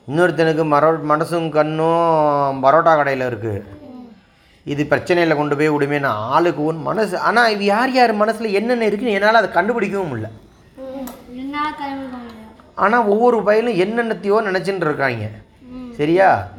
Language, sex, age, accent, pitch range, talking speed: Tamil, male, 30-49, native, 160-225 Hz, 115 wpm